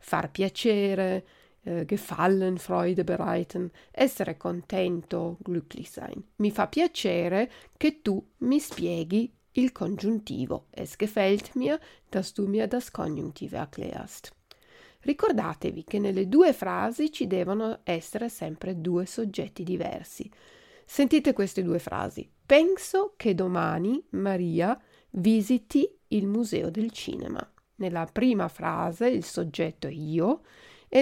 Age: 40-59